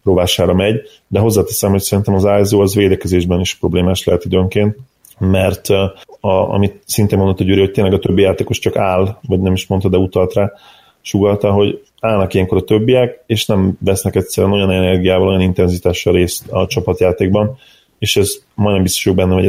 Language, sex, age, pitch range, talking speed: Hungarian, male, 30-49, 90-100 Hz, 180 wpm